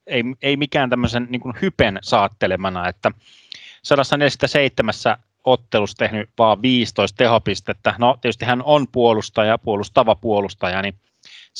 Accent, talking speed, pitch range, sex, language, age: native, 120 wpm, 105-145 Hz, male, Finnish, 30-49